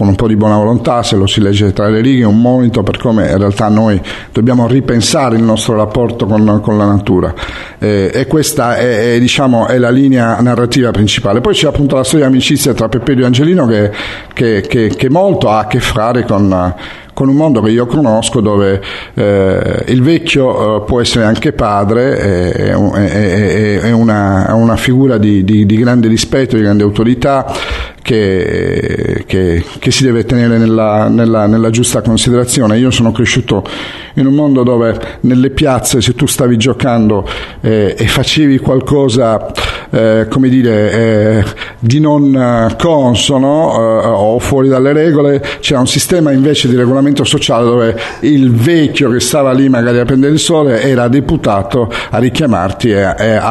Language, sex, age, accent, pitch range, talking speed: Italian, male, 50-69, native, 105-135 Hz, 175 wpm